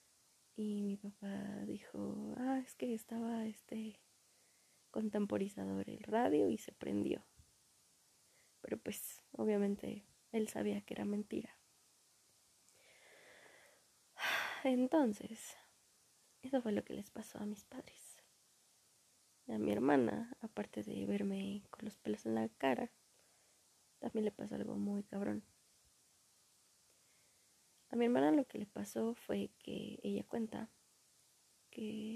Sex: female